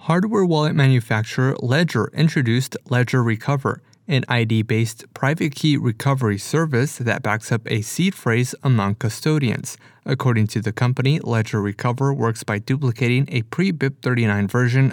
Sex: male